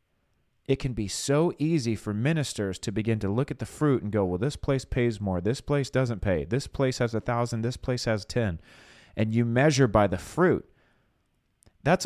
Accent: American